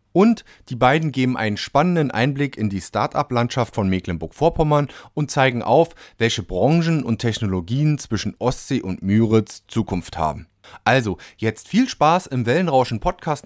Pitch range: 100-125 Hz